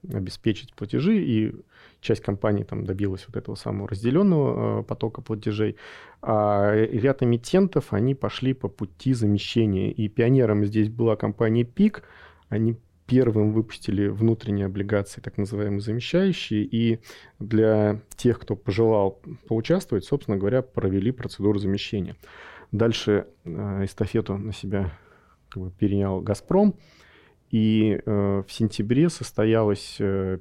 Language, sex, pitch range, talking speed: Russian, male, 100-120 Hz, 110 wpm